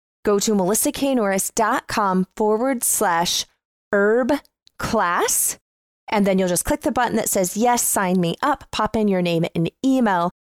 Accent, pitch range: American, 180-230 Hz